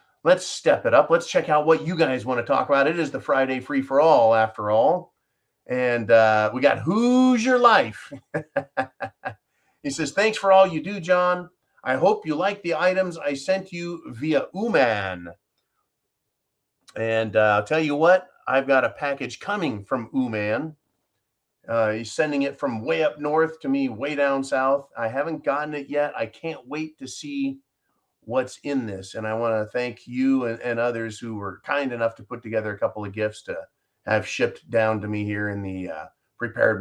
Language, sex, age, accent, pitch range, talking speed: English, male, 40-59, American, 110-150 Hz, 195 wpm